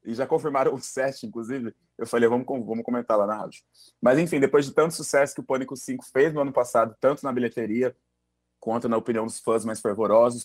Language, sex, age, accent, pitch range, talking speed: Portuguese, male, 30-49, Brazilian, 115-150 Hz, 220 wpm